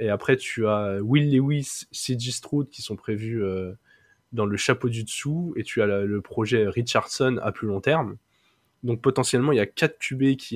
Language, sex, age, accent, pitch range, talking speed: French, male, 20-39, French, 110-135 Hz, 205 wpm